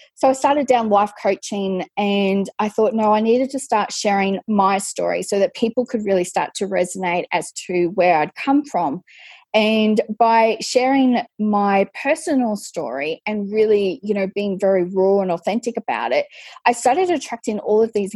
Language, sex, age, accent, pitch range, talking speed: English, female, 10-29, Australian, 195-235 Hz, 180 wpm